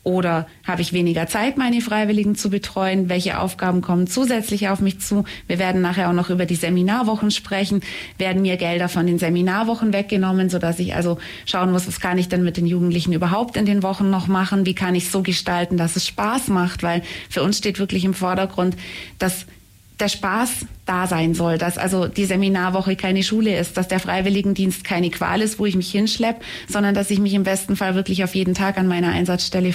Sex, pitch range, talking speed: female, 180-210 Hz, 210 wpm